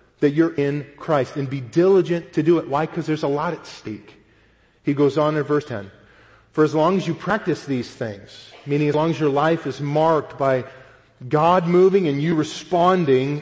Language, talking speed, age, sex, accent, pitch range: English, 200 wpm, 40-59, male, American, 135-180 Hz